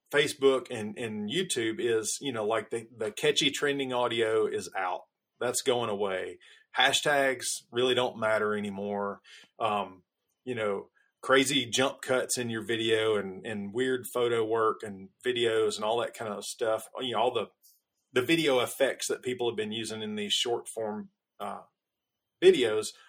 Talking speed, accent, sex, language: 165 wpm, American, male, English